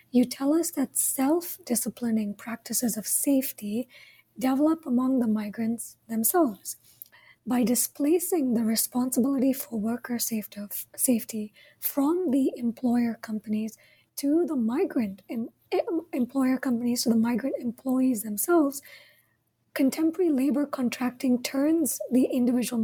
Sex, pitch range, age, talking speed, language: female, 225-270 Hz, 20-39, 110 wpm, English